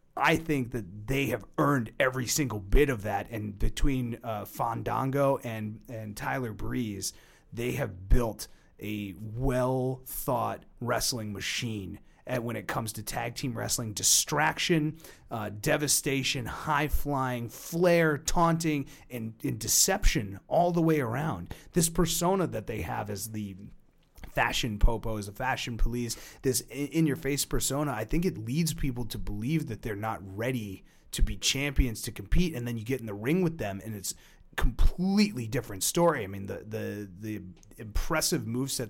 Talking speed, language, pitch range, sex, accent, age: 150 wpm, English, 110-145 Hz, male, American, 30-49